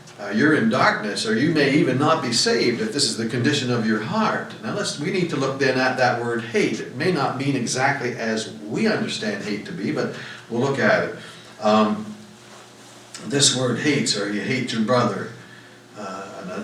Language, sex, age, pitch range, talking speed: English, male, 60-79, 105-140 Hz, 200 wpm